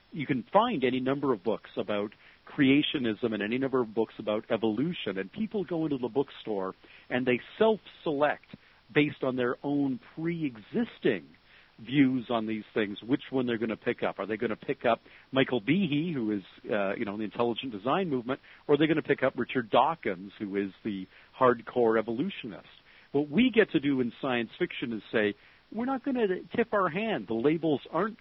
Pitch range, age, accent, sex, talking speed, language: 110-145 Hz, 50-69, American, male, 195 wpm, English